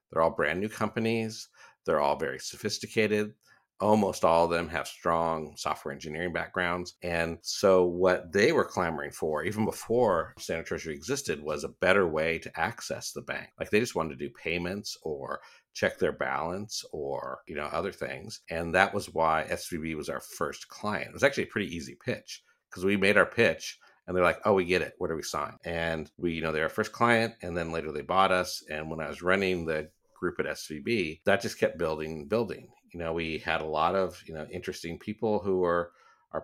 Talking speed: 210 wpm